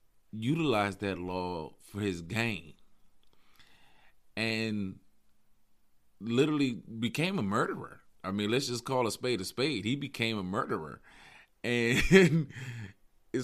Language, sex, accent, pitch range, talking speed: English, male, American, 95-120 Hz, 115 wpm